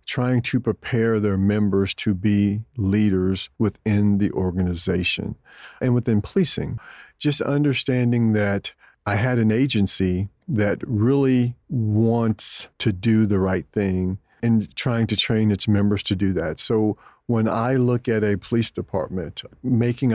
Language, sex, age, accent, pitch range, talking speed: English, male, 50-69, American, 100-115 Hz, 140 wpm